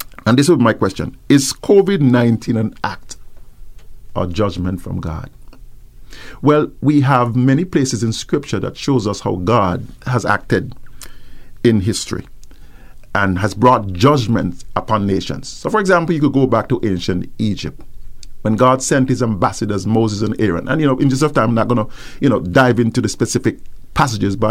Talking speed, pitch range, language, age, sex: 175 wpm, 105-130 Hz, English, 50-69, male